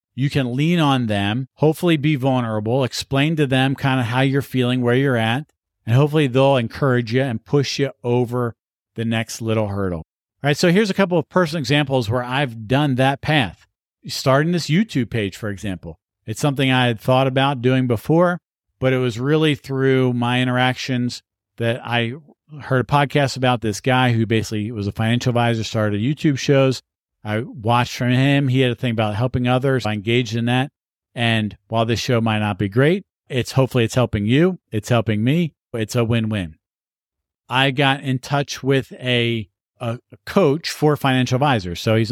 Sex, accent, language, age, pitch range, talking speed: male, American, English, 50-69, 115-135 Hz, 190 wpm